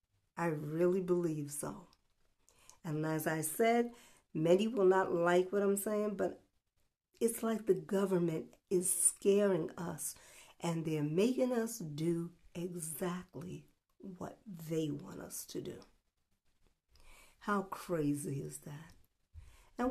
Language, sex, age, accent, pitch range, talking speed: English, female, 50-69, American, 165-215 Hz, 120 wpm